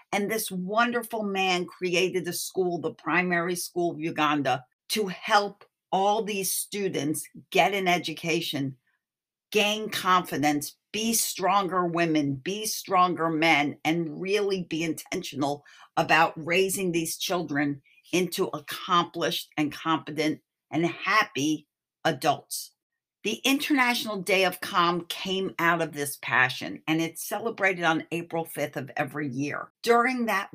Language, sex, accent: English, female, American